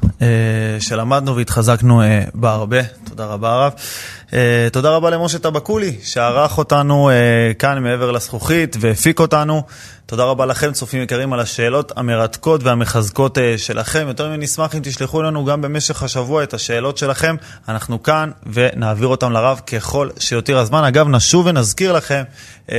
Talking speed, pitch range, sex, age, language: 135 wpm, 115-150 Hz, male, 20-39, Hebrew